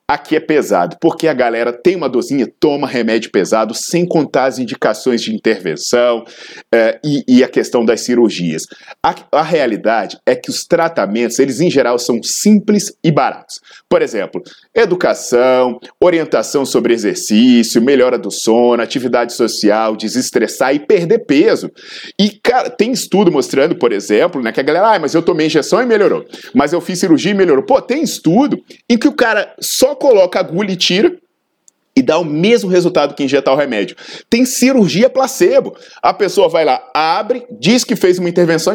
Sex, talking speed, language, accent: male, 170 wpm, Portuguese, Brazilian